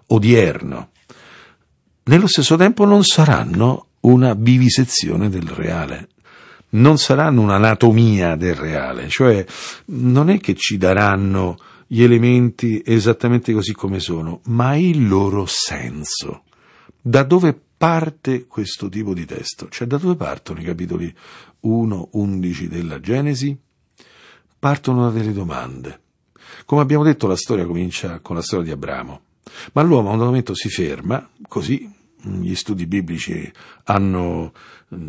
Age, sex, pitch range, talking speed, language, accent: 50-69, male, 95-135 Hz, 125 wpm, Italian, native